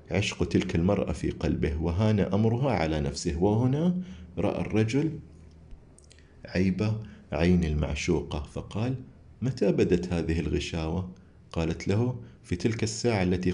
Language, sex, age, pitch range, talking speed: Arabic, male, 50-69, 85-110 Hz, 115 wpm